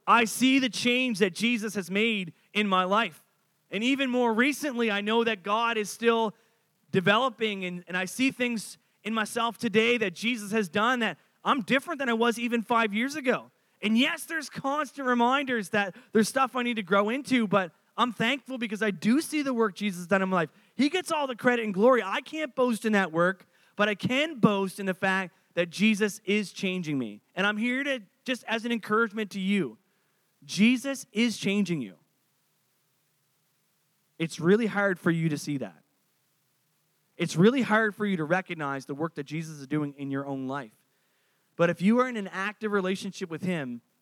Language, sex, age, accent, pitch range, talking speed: English, male, 30-49, American, 180-235 Hz, 200 wpm